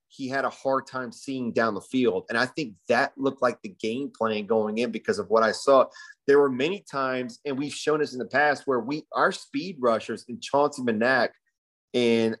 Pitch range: 115-140 Hz